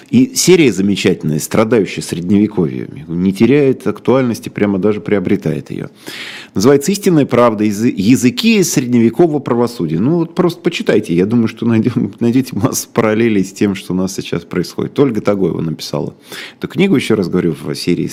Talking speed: 150 wpm